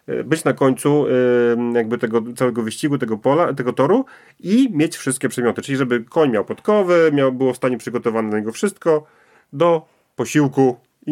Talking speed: 165 wpm